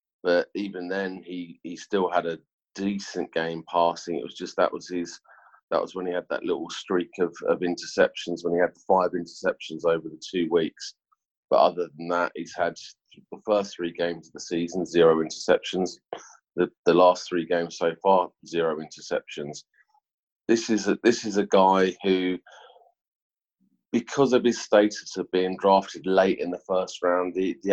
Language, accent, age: English, British, 30-49